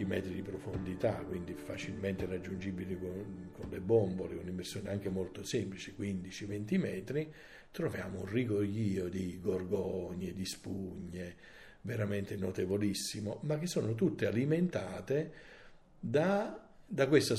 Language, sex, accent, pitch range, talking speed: Italian, male, native, 90-105 Hz, 115 wpm